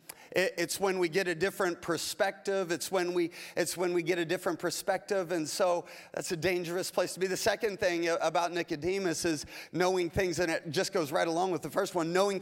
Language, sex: English, male